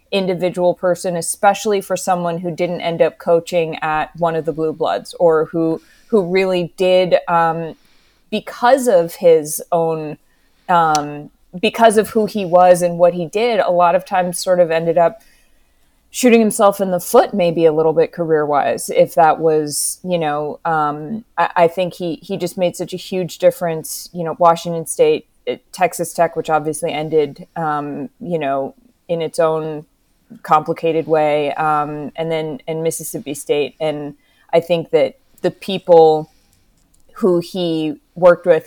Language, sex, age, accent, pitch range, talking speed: English, female, 30-49, American, 160-185 Hz, 160 wpm